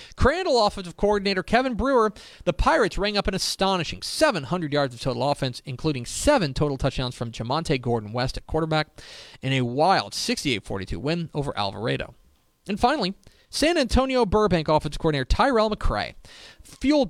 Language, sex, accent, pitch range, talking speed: English, male, American, 125-185 Hz, 145 wpm